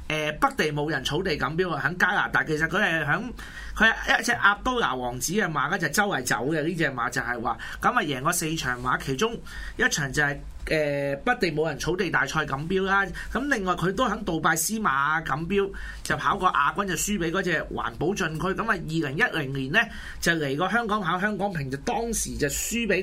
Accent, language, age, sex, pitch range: native, Chinese, 30-49, male, 145-205 Hz